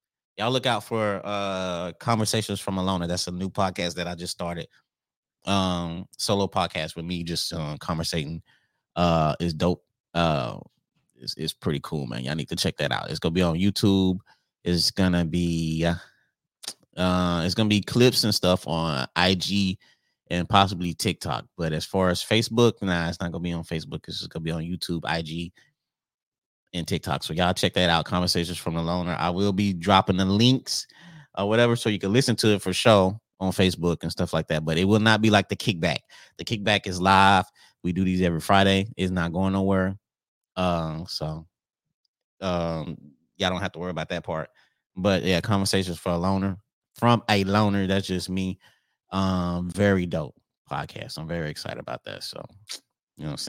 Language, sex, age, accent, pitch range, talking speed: English, male, 30-49, American, 85-100 Hz, 190 wpm